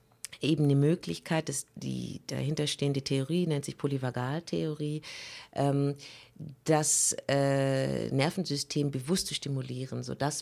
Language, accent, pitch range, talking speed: German, German, 135-160 Hz, 90 wpm